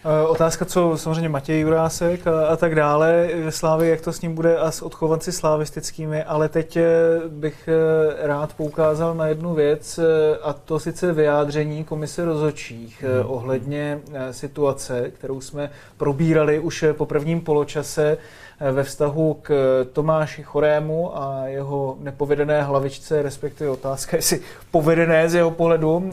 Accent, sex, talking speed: native, male, 135 wpm